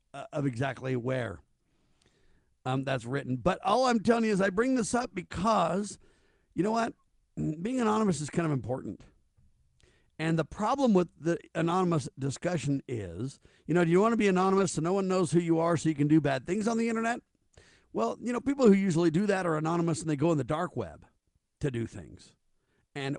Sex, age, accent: male, 50-69, American